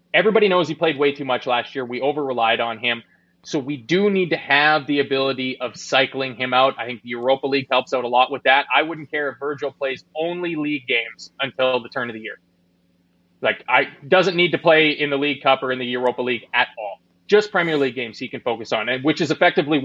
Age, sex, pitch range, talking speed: 30-49, male, 130-165 Hz, 240 wpm